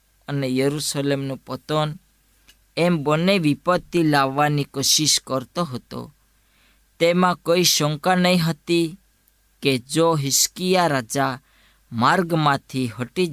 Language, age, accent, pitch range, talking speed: Gujarati, 20-39, native, 130-160 Hz, 75 wpm